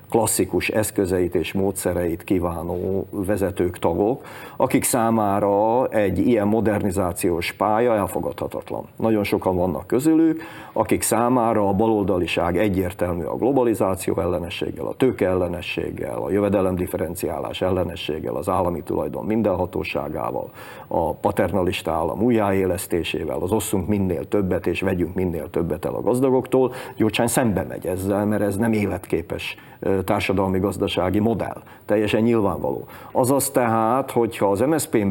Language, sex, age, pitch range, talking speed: Hungarian, male, 50-69, 95-110 Hz, 115 wpm